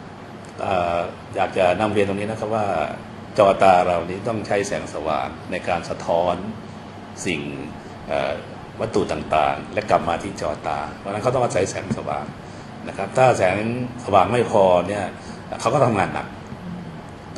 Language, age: Thai, 60-79